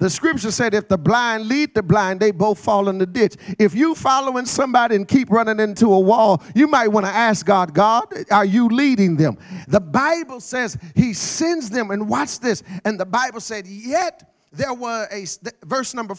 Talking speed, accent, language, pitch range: 205 wpm, American, English, 185-225 Hz